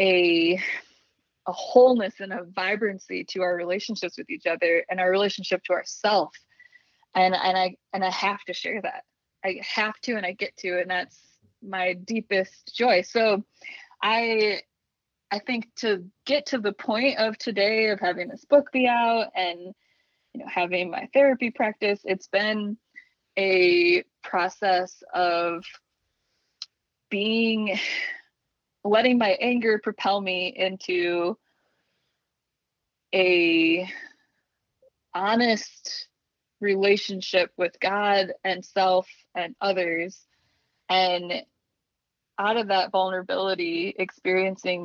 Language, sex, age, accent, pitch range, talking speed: English, female, 20-39, American, 180-220 Hz, 120 wpm